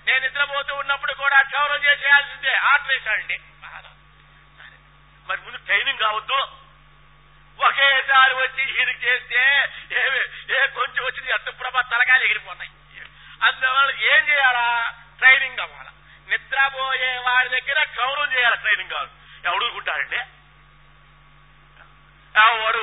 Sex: male